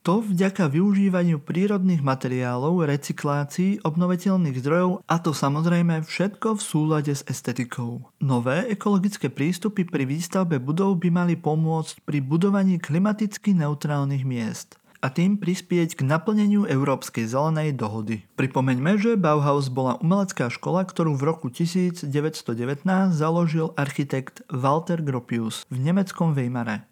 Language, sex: Slovak, male